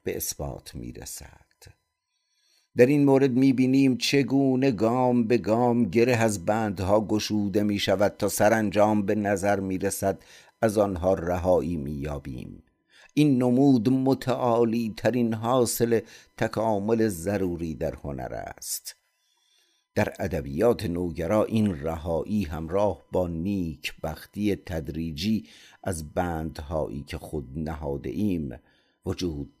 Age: 50-69